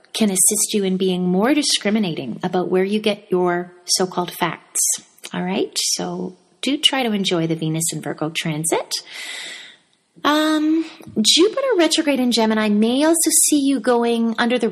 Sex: female